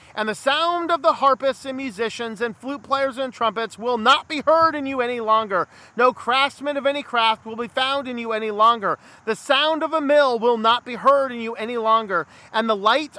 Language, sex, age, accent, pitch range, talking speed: English, male, 40-59, American, 200-270 Hz, 225 wpm